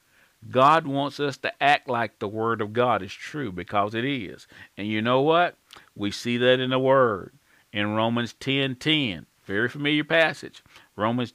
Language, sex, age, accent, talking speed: English, male, 50-69, American, 175 wpm